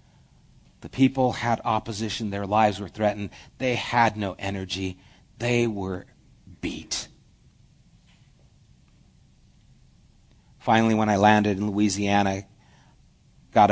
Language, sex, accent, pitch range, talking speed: English, male, American, 95-115 Hz, 95 wpm